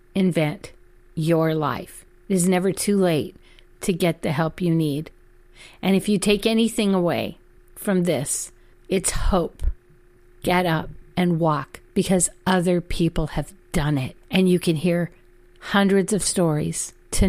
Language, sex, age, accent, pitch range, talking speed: English, female, 50-69, American, 155-190 Hz, 145 wpm